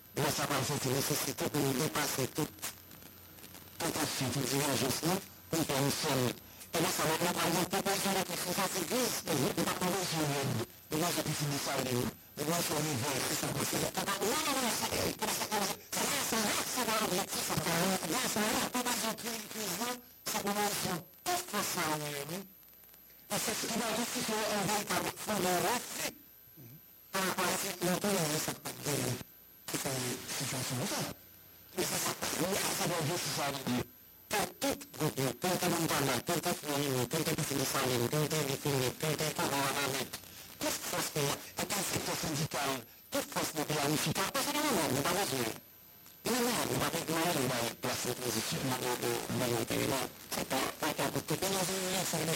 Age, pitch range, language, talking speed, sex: 60-79, 140-190 Hz, English, 150 wpm, male